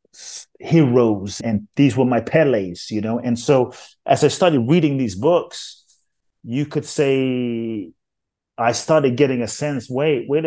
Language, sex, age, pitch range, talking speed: English, male, 30-49, 110-140 Hz, 150 wpm